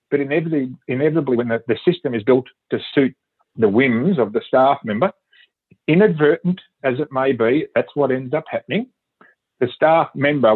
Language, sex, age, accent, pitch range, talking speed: English, male, 40-59, Australian, 115-150 Hz, 170 wpm